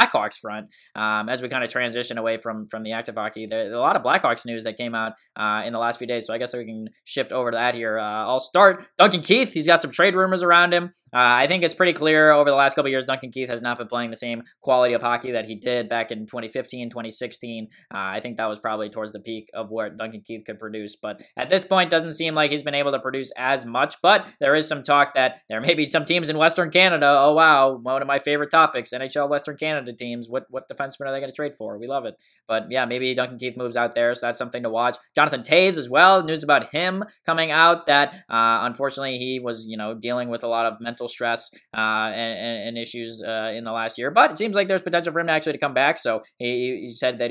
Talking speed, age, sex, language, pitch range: 265 wpm, 10-29, male, English, 115-150 Hz